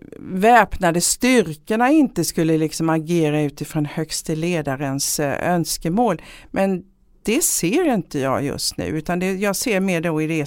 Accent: native